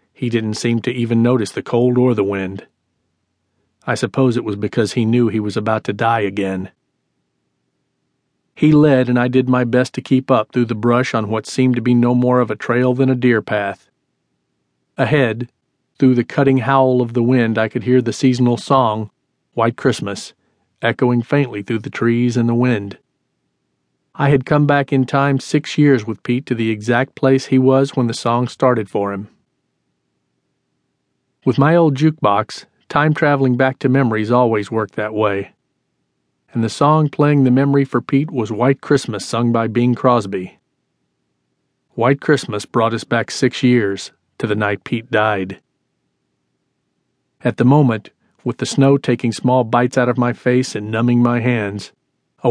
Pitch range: 110-130 Hz